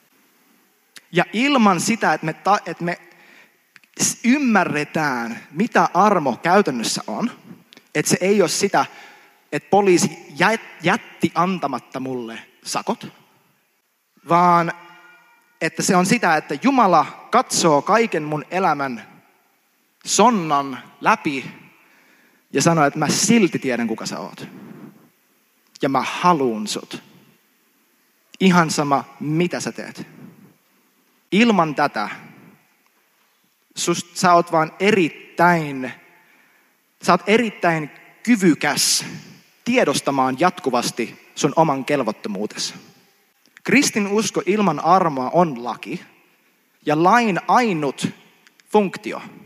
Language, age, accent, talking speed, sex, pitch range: Finnish, 30-49, native, 100 wpm, male, 150-195 Hz